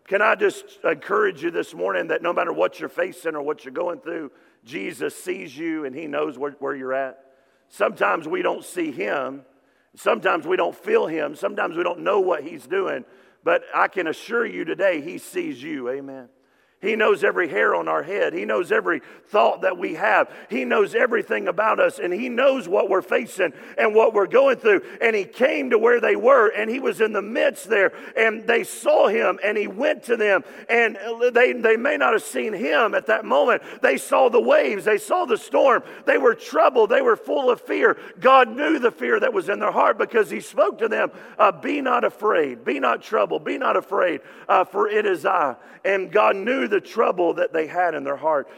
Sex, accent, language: male, American, English